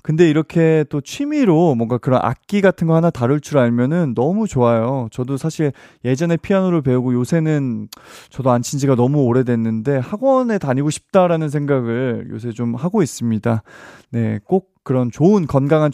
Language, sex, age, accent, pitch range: Korean, male, 20-39, native, 130-180 Hz